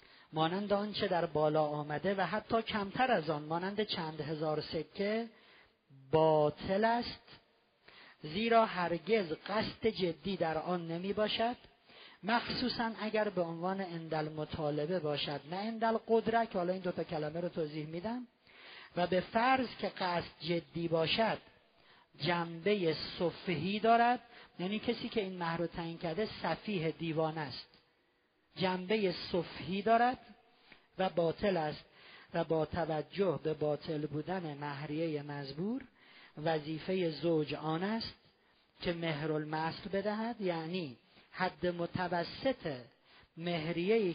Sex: male